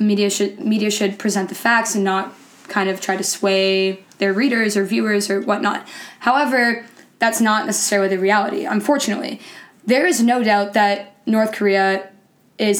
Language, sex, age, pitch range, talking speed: English, female, 10-29, 195-220 Hz, 165 wpm